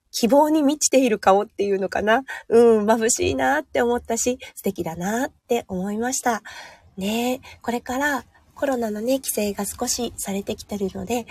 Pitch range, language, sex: 195-245 Hz, Japanese, female